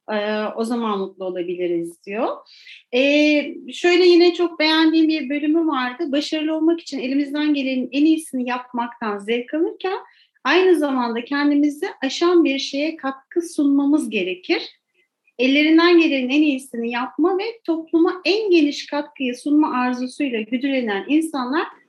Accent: native